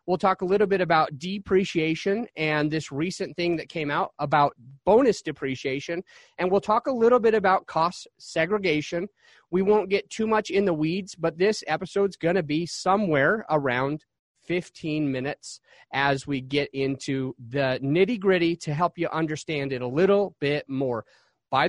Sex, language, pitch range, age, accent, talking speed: male, English, 145-195 Hz, 30-49, American, 170 wpm